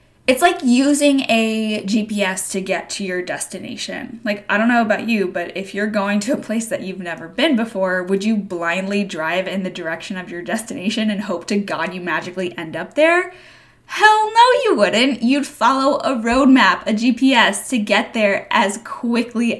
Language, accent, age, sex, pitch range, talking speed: English, American, 10-29, female, 195-265 Hz, 190 wpm